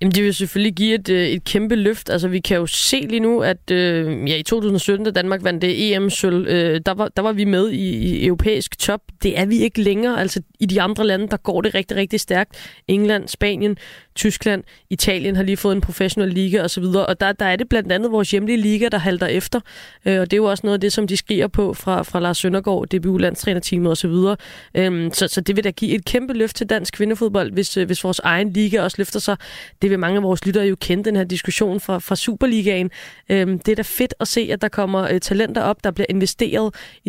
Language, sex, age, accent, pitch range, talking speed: Danish, female, 20-39, native, 185-210 Hz, 240 wpm